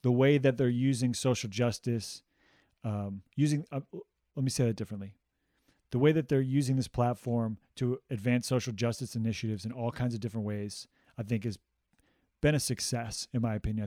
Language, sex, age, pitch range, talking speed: English, male, 30-49, 110-130 Hz, 180 wpm